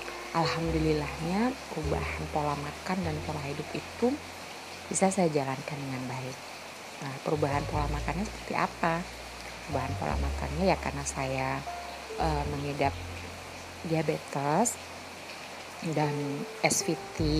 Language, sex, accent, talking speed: Indonesian, female, native, 105 wpm